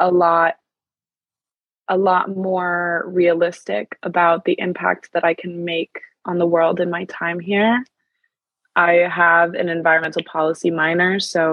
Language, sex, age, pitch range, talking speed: English, female, 20-39, 165-185 Hz, 140 wpm